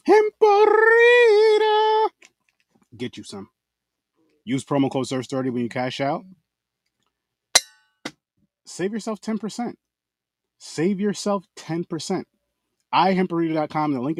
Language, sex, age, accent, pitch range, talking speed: English, male, 30-49, American, 95-140 Hz, 90 wpm